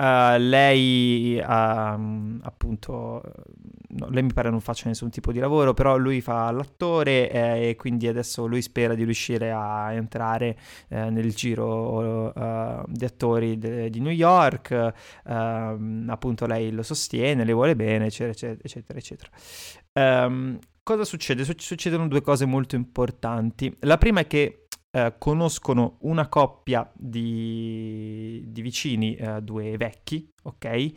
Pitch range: 115-135 Hz